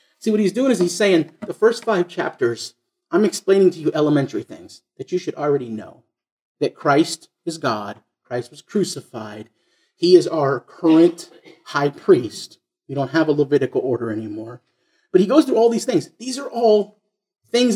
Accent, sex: American, male